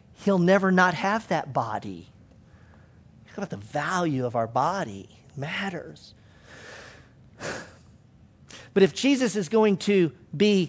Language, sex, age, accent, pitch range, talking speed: English, male, 40-59, American, 195-265 Hz, 125 wpm